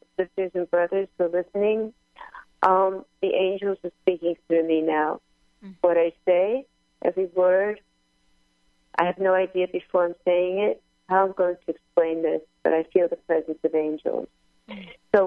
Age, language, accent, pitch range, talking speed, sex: 50-69, English, American, 155-200 Hz, 160 wpm, female